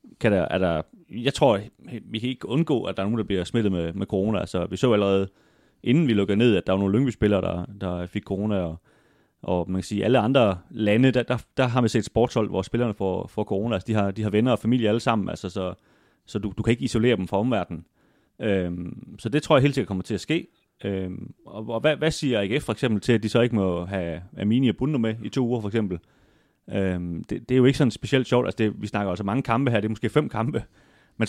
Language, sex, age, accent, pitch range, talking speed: Danish, male, 30-49, native, 95-125 Hz, 260 wpm